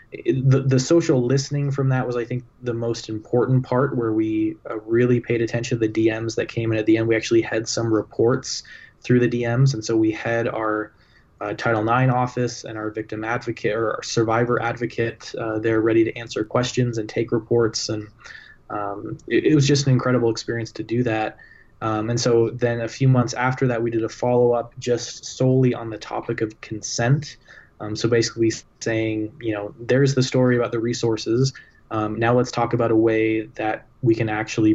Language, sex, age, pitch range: English, male, 20-39, 110-125 Hz